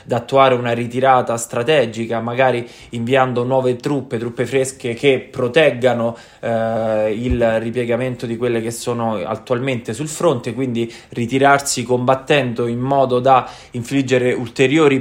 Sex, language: male, Italian